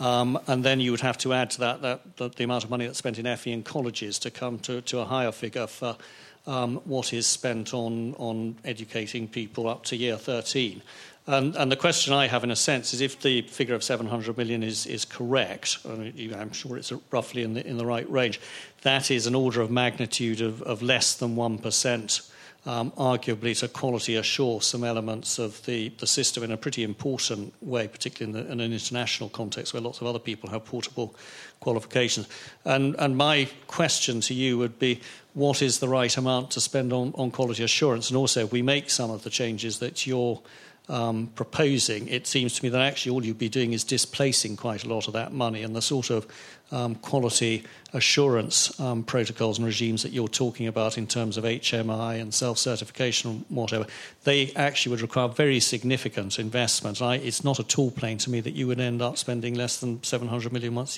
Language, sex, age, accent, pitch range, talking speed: English, male, 50-69, British, 115-130 Hz, 210 wpm